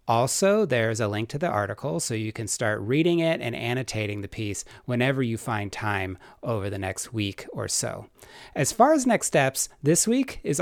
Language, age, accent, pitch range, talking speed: English, 30-49, American, 110-140 Hz, 200 wpm